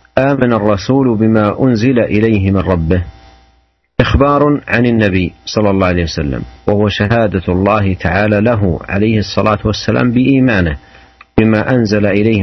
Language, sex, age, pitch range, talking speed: Malay, male, 50-69, 90-125 Hz, 125 wpm